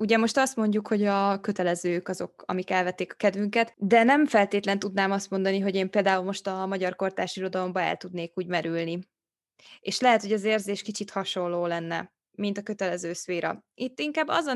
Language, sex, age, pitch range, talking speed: Hungarian, female, 20-39, 185-225 Hz, 190 wpm